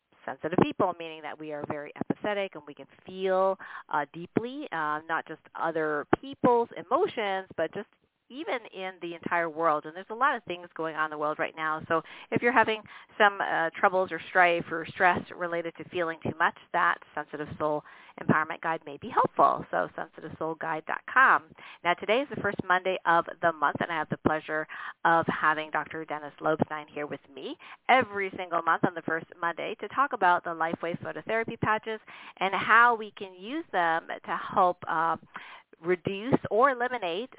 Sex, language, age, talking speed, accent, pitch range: female, English, 40-59, 185 wpm, American, 160-195 Hz